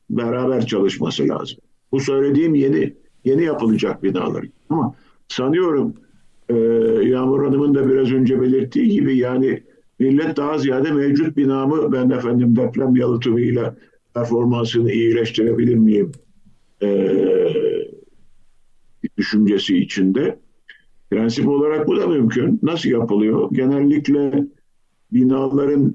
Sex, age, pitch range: male, 50-69, 105-135 Hz